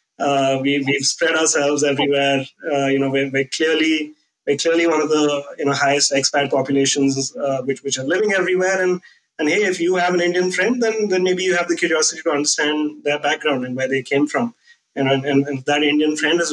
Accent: Indian